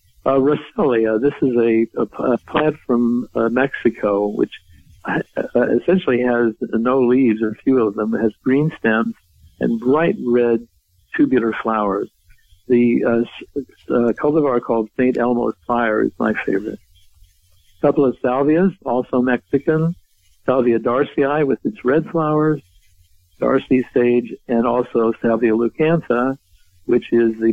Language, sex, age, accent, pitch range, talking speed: English, male, 60-79, American, 110-130 Hz, 135 wpm